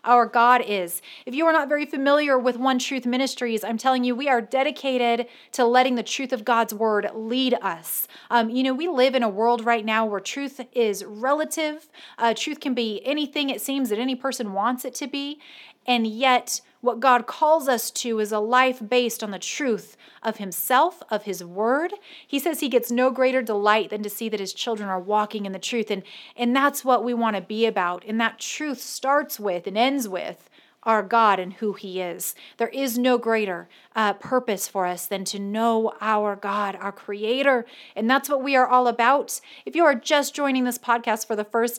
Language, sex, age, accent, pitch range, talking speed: English, female, 30-49, American, 220-275 Hz, 215 wpm